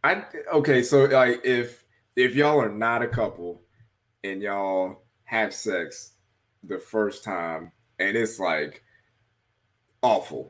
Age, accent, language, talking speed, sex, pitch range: 20-39, American, English, 125 wpm, male, 105-130 Hz